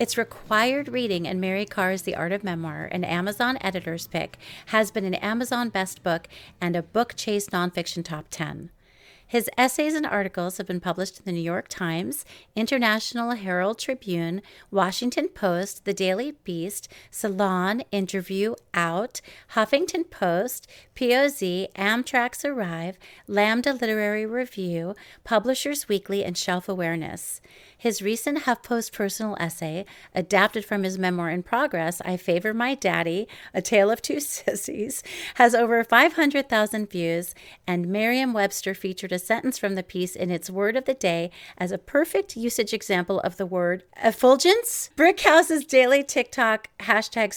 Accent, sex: American, female